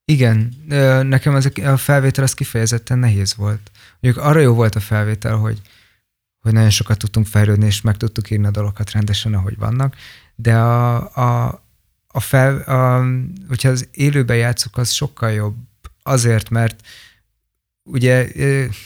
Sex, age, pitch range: male, 20-39, 105-125 Hz